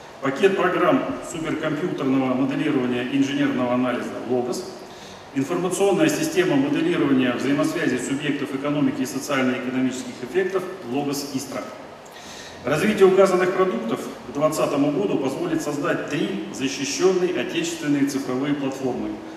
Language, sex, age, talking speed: Russian, male, 40-59, 110 wpm